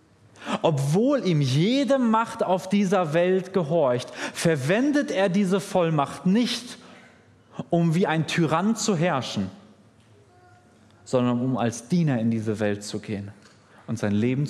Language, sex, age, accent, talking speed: German, male, 30-49, German, 130 wpm